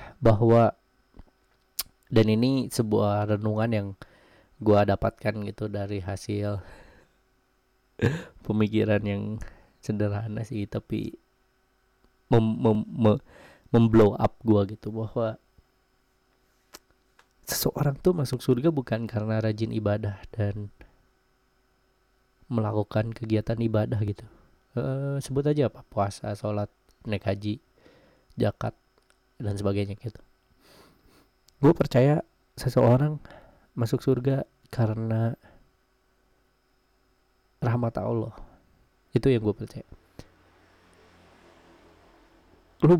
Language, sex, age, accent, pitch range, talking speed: Indonesian, male, 20-39, native, 105-125 Hz, 80 wpm